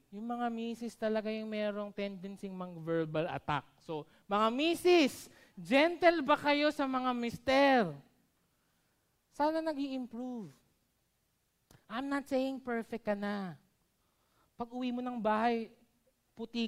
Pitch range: 200-270 Hz